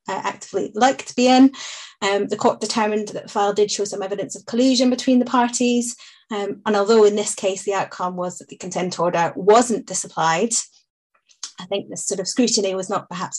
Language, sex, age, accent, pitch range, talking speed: English, female, 30-49, British, 185-210 Hz, 205 wpm